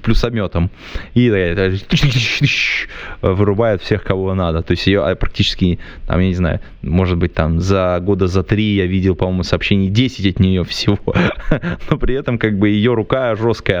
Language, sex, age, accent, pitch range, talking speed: Russian, male, 20-39, native, 90-105 Hz, 160 wpm